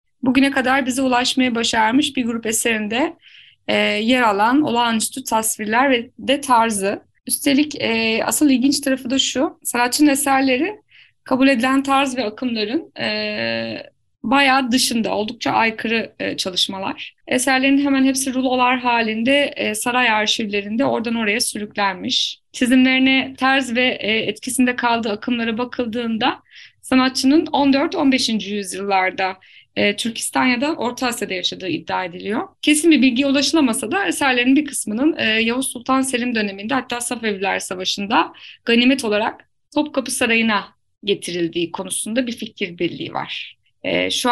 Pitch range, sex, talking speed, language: 220-275 Hz, female, 125 wpm, Turkish